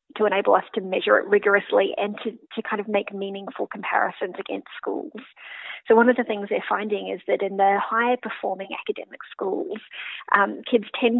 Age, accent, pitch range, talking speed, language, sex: 30-49, Australian, 205-280 Hz, 190 wpm, English, female